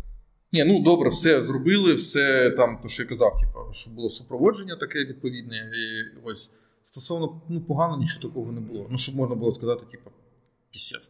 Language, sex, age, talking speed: Ukrainian, male, 20-39, 180 wpm